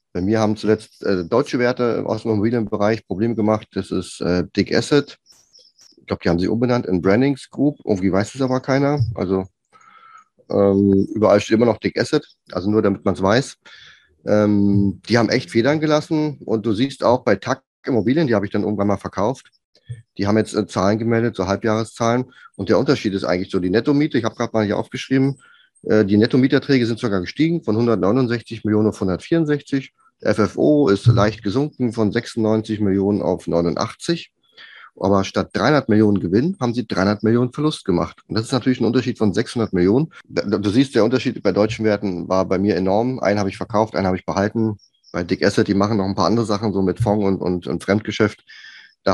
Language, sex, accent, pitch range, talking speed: German, male, German, 100-120 Hz, 200 wpm